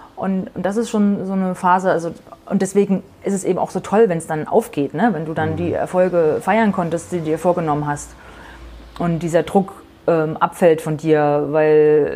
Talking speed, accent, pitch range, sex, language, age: 195 wpm, German, 160-190 Hz, female, German, 30-49